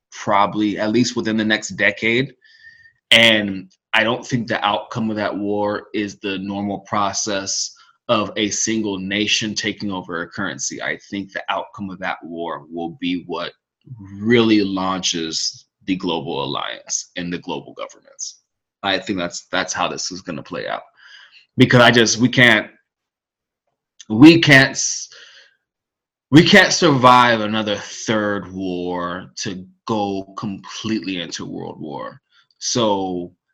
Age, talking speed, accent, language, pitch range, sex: 20-39, 140 wpm, American, English, 95-115 Hz, male